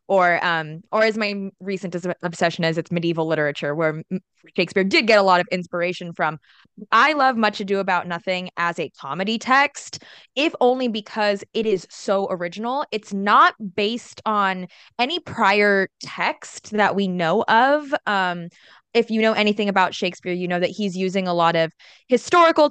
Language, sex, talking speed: English, female, 170 wpm